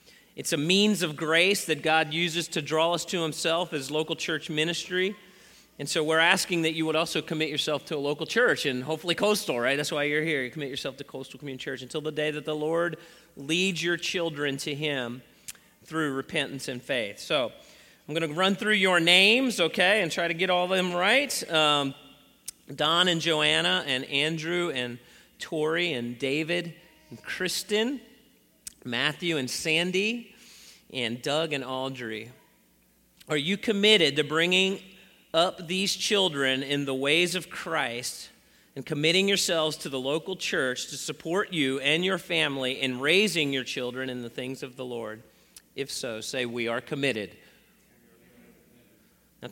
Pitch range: 140-175 Hz